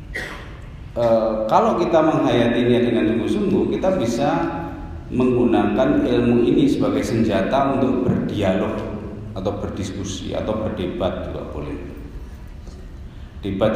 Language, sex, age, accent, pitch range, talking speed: Indonesian, male, 40-59, native, 90-120 Hz, 95 wpm